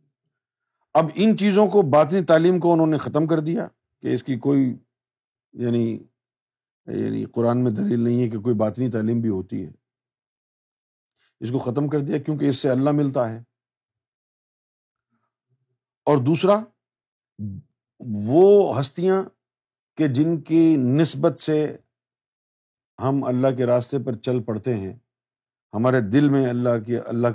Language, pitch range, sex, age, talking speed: Urdu, 120-150 Hz, male, 50-69, 140 wpm